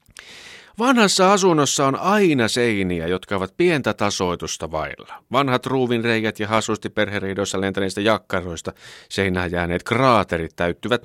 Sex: male